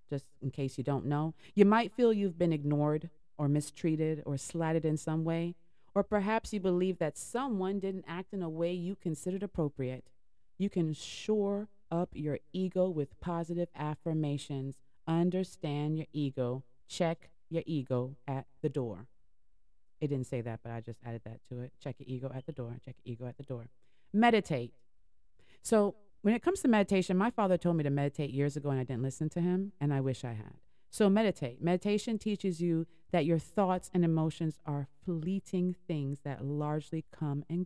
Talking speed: 185 wpm